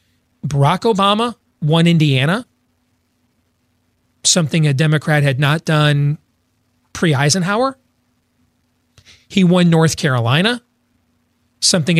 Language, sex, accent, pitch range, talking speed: English, male, American, 120-195 Hz, 80 wpm